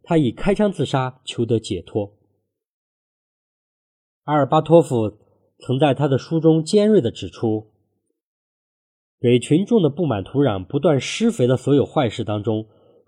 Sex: male